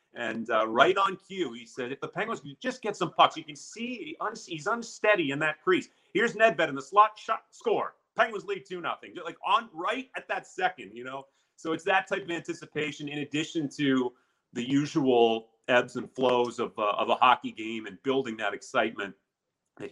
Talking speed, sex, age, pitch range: 210 wpm, male, 30-49, 120-150 Hz